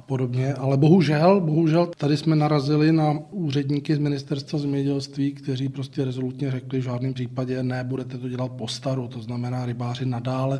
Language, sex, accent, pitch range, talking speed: Czech, male, native, 130-150 Hz, 155 wpm